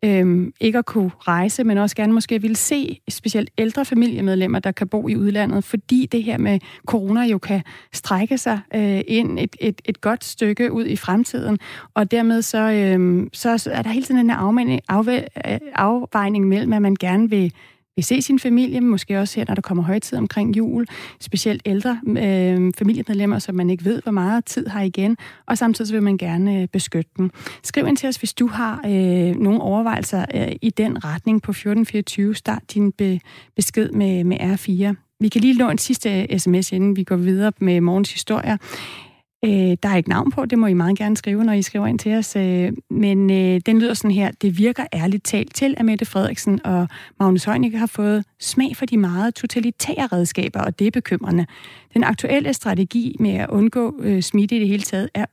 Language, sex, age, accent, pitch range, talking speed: Danish, female, 30-49, native, 195-230 Hz, 205 wpm